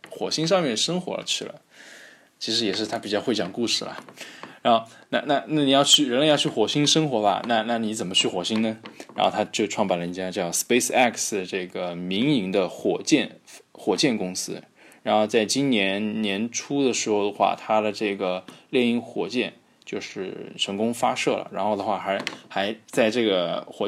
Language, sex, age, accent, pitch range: Chinese, male, 20-39, native, 100-125 Hz